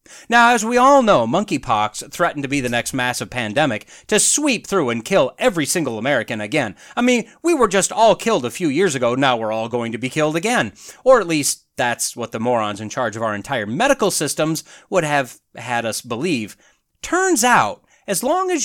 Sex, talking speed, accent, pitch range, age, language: male, 210 wpm, American, 140-230 Hz, 30-49, English